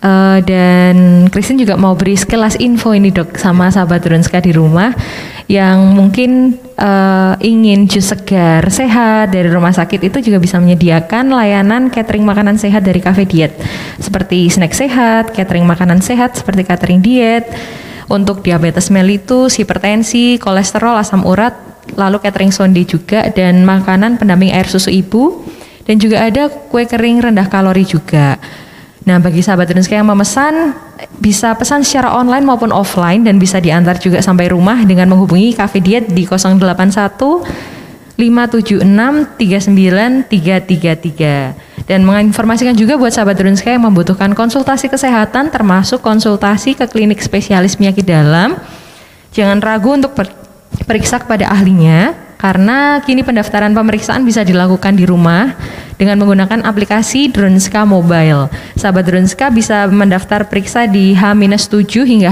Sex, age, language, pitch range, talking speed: female, 20-39, Indonesian, 185-225 Hz, 135 wpm